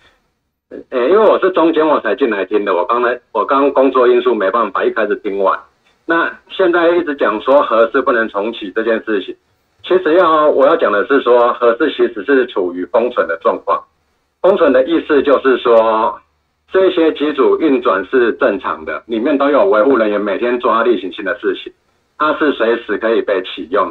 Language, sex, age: Chinese, male, 60-79